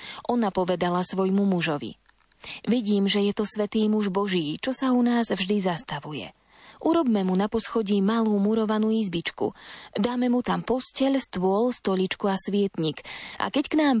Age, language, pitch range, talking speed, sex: 20-39, Slovak, 185-235 Hz, 155 wpm, female